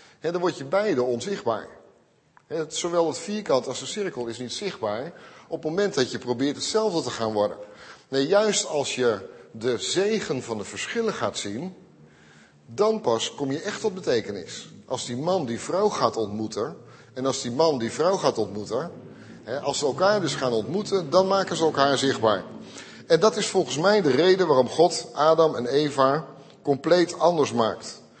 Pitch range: 125-190 Hz